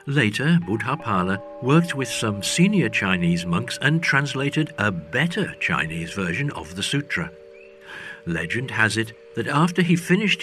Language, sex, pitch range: English, male, 100-170 Hz